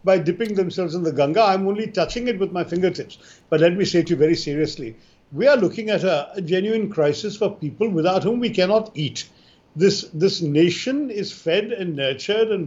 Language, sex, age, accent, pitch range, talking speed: Hindi, male, 50-69, native, 170-225 Hz, 210 wpm